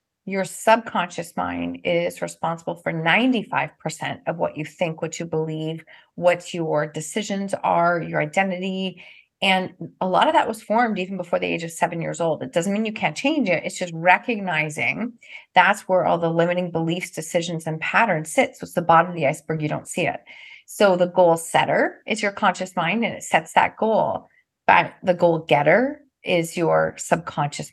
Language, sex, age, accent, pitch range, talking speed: English, female, 30-49, American, 160-190 Hz, 185 wpm